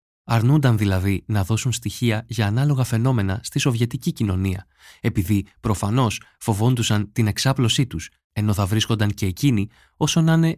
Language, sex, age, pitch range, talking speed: Greek, male, 20-39, 100-125 Hz, 140 wpm